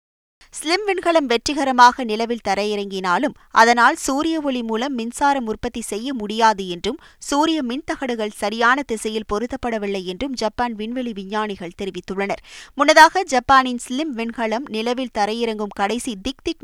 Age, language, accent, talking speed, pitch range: 20-39, Tamil, native, 115 wpm, 210-280 Hz